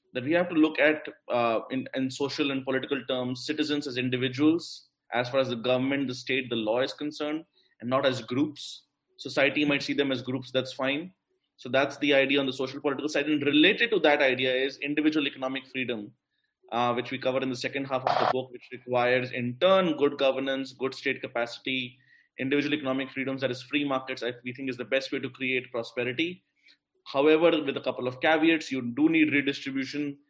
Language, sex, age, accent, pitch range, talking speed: English, male, 20-39, Indian, 130-150 Hz, 205 wpm